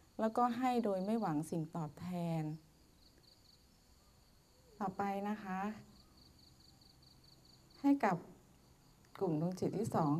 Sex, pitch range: female, 160-210 Hz